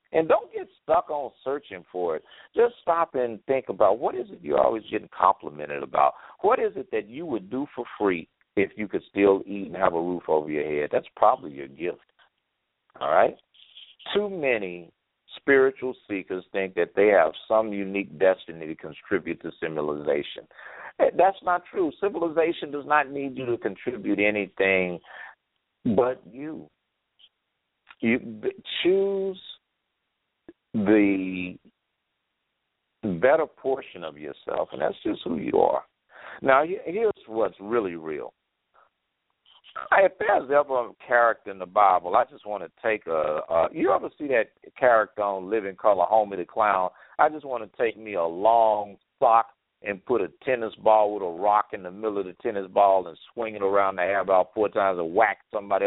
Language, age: English, 60-79